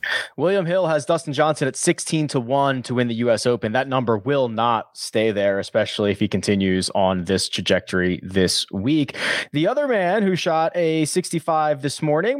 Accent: American